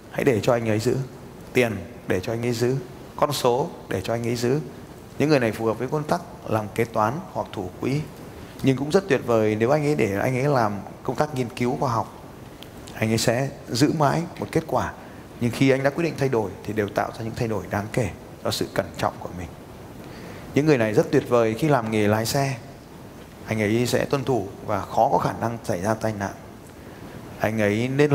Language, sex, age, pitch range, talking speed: Vietnamese, male, 20-39, 110-135 Hz, 235 wpm